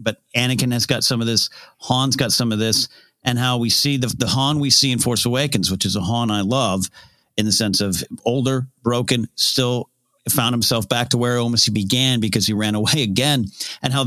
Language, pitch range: English, 110-130 Hz